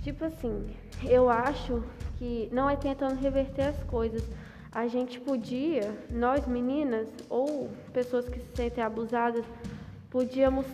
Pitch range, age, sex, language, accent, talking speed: 245-280 Hz, 10-29, female, Portuguese, Brazilian, 130 wpm